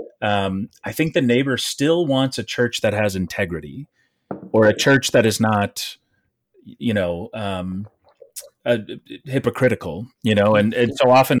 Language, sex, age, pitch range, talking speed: English, male, 30-49, 95-120 Hz, 155 wpm